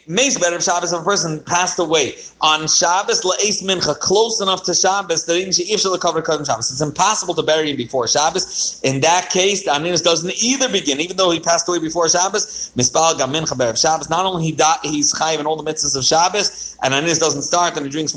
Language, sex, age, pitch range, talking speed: English, male, 30-49, 155-195 Hz, 240 wpm